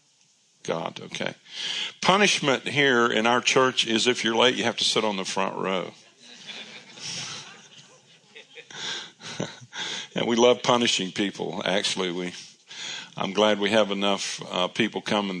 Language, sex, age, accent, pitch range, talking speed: English, male, 60-79, American, 100-145 Hz, 130 wpm